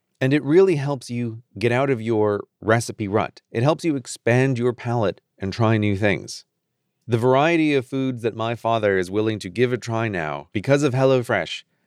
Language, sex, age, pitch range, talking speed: English, male, 30-49, 100-130 Hz, 190 wpm